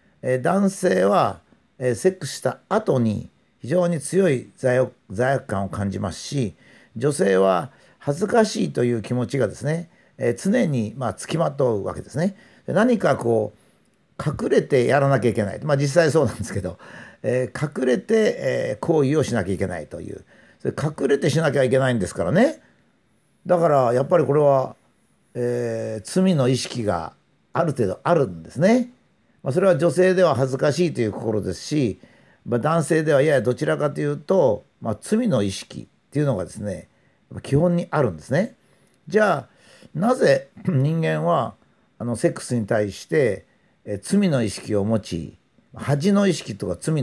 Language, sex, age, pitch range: Japanese, male, 50-69, 115-175 Hz